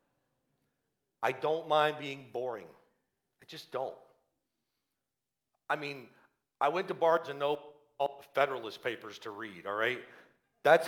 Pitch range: 140-230 Hz